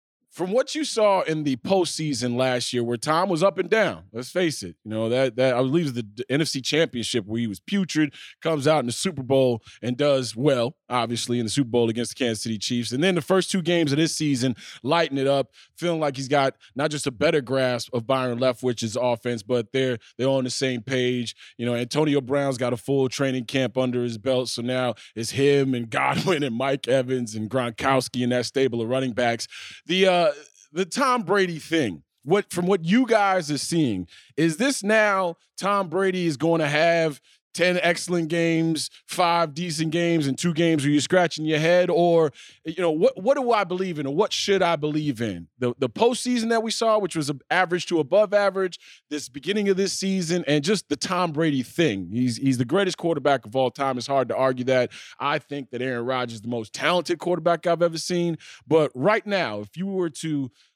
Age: 20-39